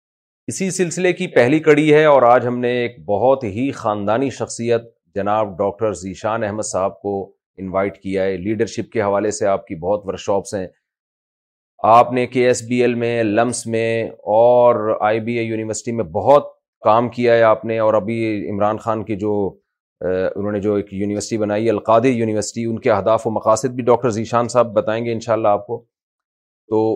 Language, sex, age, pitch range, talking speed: Urdu, male, 40-59, 110-130 Hz, 185 wpm